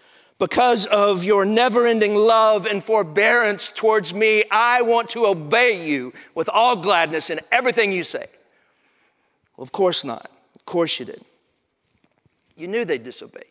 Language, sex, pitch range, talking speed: English, male, 150-235 Hz, 145 wpm